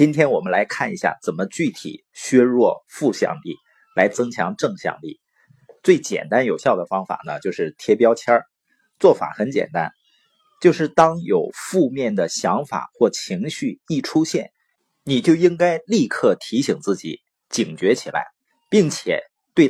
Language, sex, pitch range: Chinese, male, 125-195 Hz